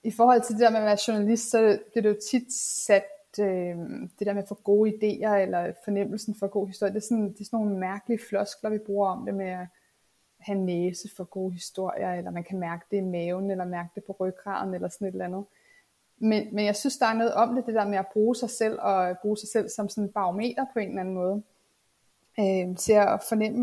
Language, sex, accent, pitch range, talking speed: Danish, female, native, 195-230 Hz, 250 wpm